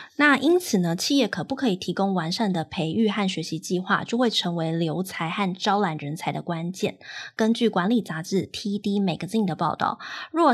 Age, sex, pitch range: 20-39, female, 180-225 Hz